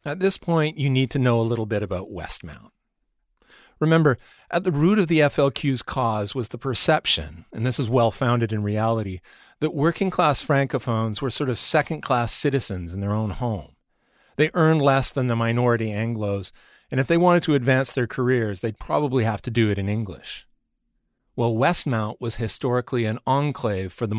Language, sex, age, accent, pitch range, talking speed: English, male, 40-59, American, 105-140 Hz, 180 wpm